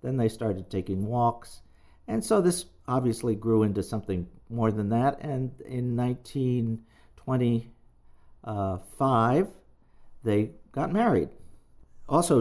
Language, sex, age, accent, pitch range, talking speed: English, male, 50-69, American, 100-135 Hz, 115 wpm